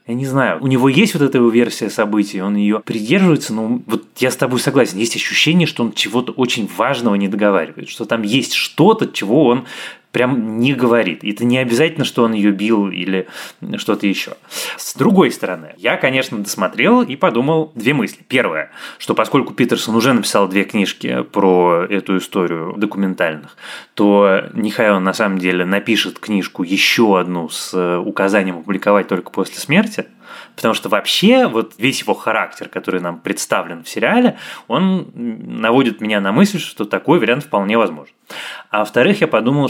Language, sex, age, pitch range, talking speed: Russian, male, 20-39, 100-140 Hz, 170 wpm